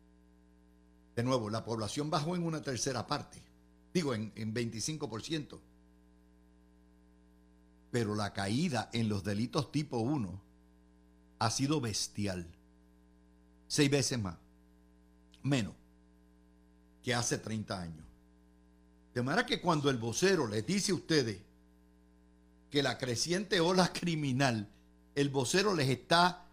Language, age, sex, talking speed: Spanish, 50-69, male, 115 wpm